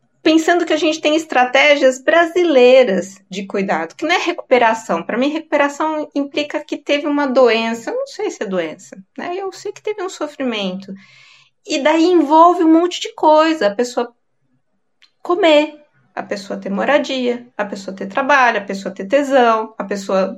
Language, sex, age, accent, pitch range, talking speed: Portuguese, female, 20-39, Brazilian, 225-320 Hz, 170 wpm